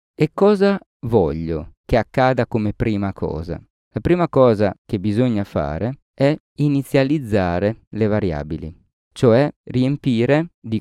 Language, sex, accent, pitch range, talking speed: Italian, male, native, 100-140 Hz, 115 wpm